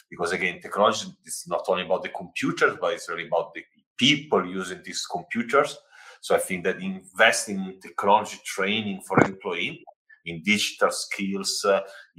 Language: English